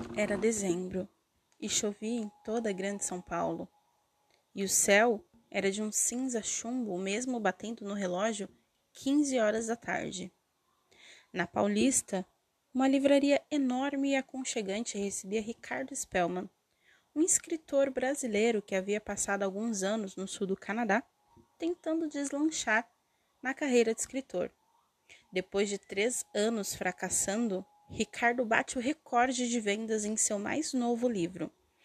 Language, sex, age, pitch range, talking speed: Portuguese, female, 20-39, 205-275 Hz, 130 wpm